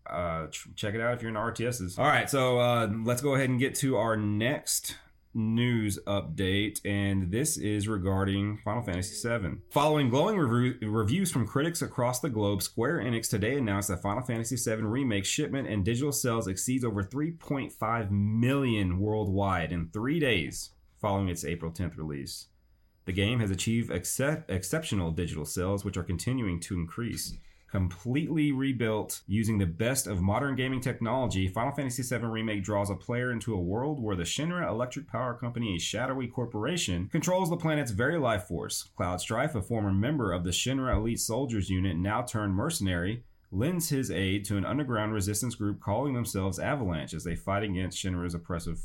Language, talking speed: English, 175 wpm